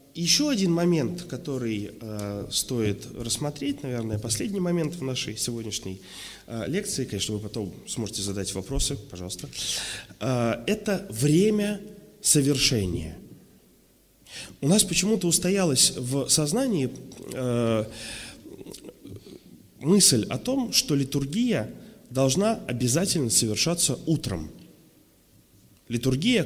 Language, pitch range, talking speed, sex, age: Russian, 115-170 Hz, 90 wpm, male, 30-49